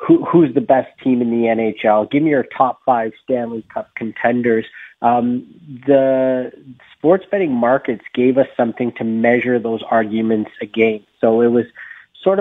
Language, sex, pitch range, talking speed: English, male, 110-125 Hz, 160 wpm